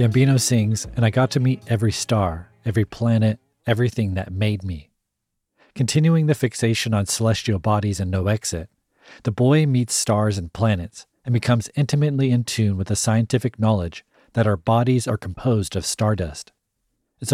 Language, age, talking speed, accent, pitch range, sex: English, 40-59, 165 wpm, American, 100-130 Hz, male